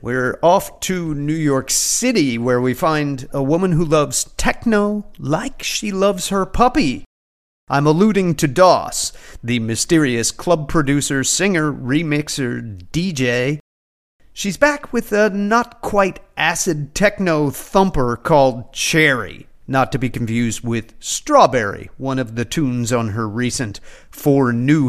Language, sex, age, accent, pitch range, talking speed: English, male, 40-59, American, 125-205 Hz, 125 wpm